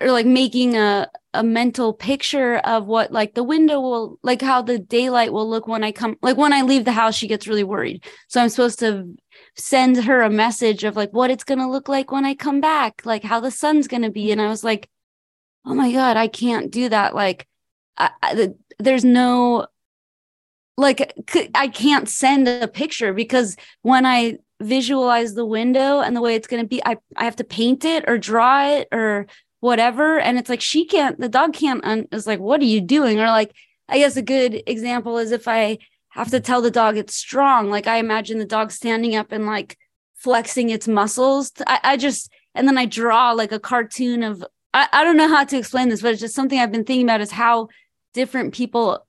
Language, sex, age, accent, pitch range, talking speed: English, female, 20-39, American, 225-260 Hz, 220 wpm